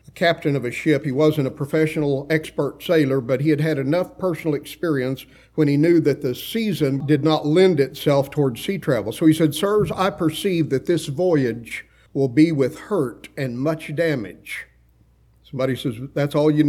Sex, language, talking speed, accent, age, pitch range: male, English, 185 wpm, American, 50-69, 135-165 Hz